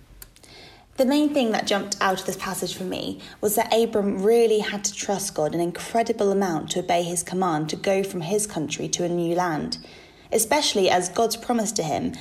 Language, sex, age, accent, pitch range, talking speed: English, female, 20-39, British, 185-230 Hz, 200 wpm